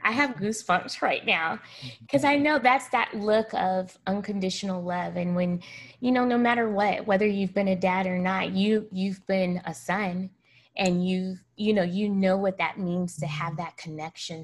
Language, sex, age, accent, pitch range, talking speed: English, female, 20-39, American, 170-200 Hz, 195 wpm